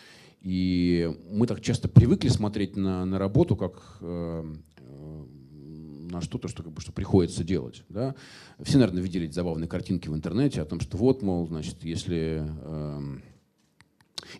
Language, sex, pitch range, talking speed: Russian, male, 80-105 Hz, 150 wpm